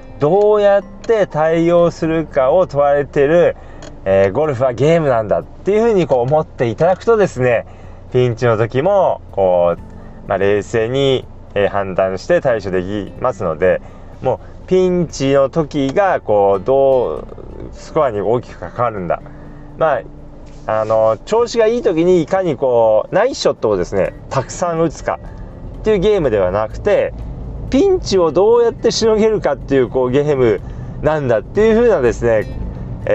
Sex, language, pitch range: male, Japanese, 110-175 Hz